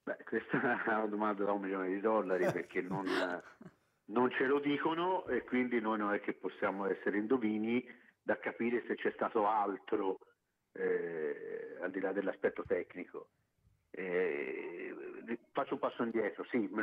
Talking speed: 160 wpm